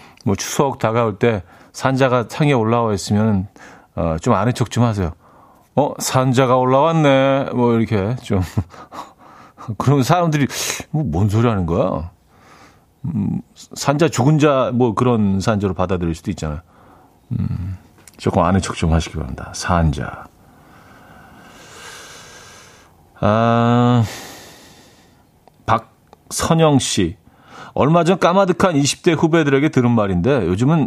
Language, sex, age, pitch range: Korean, male, 40-59, 105-140 Hz